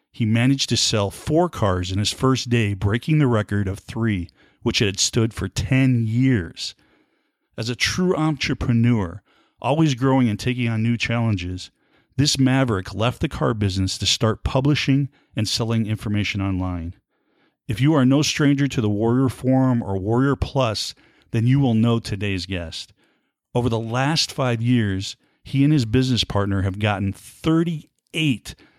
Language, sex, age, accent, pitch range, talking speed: English, male, 40-59, American, 105-130 Hz, 160 wpm